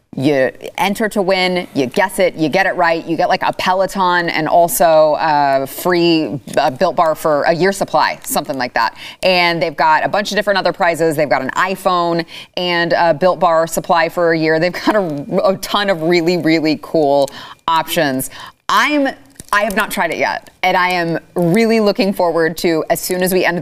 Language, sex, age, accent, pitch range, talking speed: English, female, 30-49, American, 155-195 Hz, 200 wpm